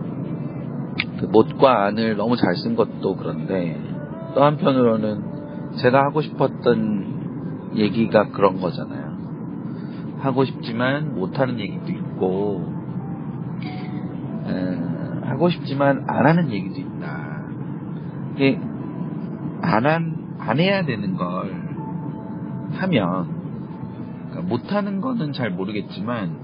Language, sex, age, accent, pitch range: Korean, male, 40-59, native, 105-160 Hz